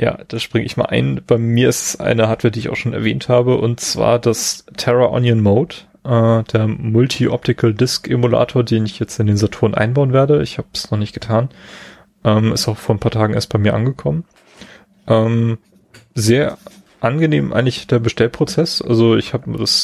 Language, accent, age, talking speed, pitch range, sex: German, German, 30-49, 185 wpm, 110-125 Hz, male